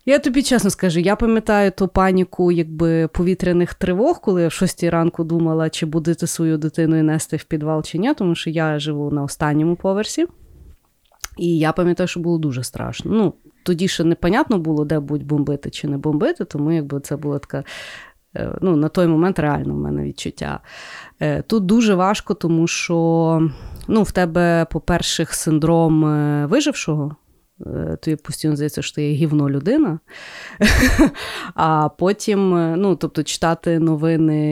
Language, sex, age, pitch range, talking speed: Ukrainian, female, 30-49, 150-175 Hz, 155 wpm